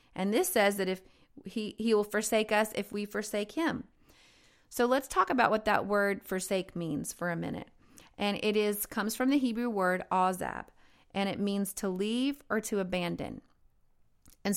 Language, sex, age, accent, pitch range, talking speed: English, female, 30-49, American, 195-240 Hz, 180 wpm